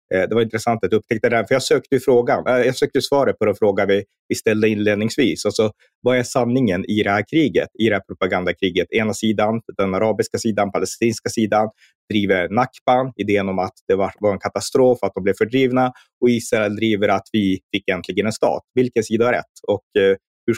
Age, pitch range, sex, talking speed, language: 30-49, 100-115 Hz, male, 195 wpm, English